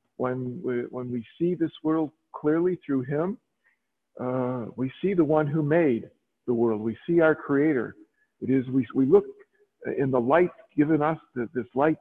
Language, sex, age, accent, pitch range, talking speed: English, male, 50-69, American, 125-160 Hz, 180 wpm